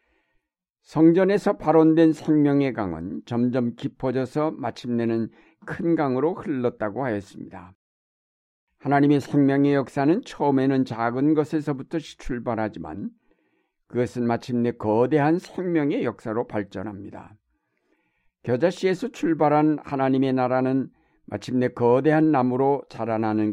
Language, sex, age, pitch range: Korean, male, 60-79, 120-150 Hz